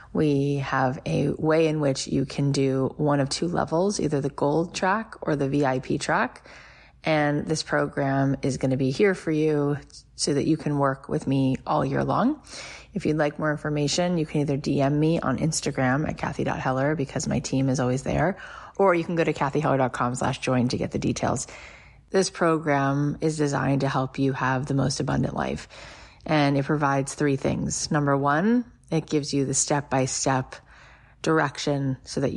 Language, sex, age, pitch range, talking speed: English, female, 30-49, 135-155 Hz, 185 wpm